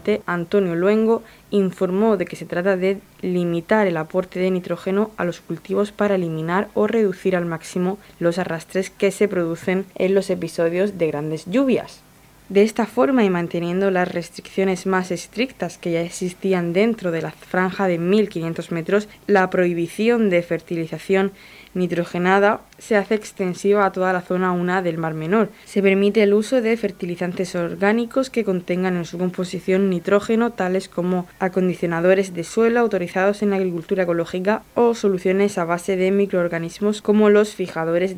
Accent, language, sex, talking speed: Spanish, Spanish, female, 155 wpm